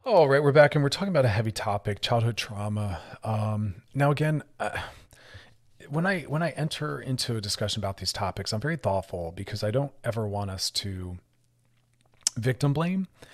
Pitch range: 105-125 Hz